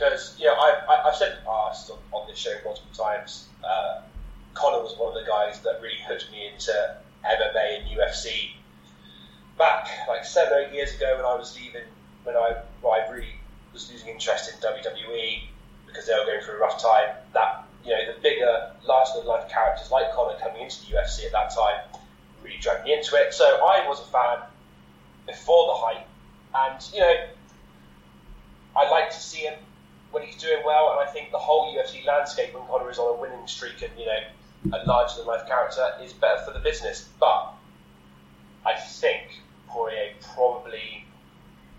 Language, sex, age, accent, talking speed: English, male, 20-39, British, 185 wpm